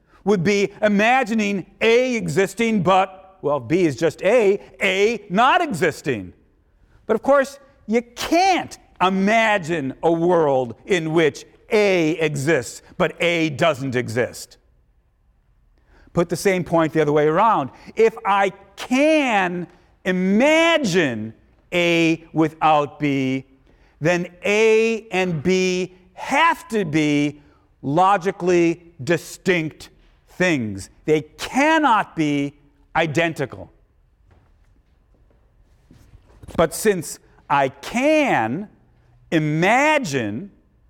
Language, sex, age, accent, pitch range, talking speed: English, male, 50-69, American, 135-210 Hz, 95 wpm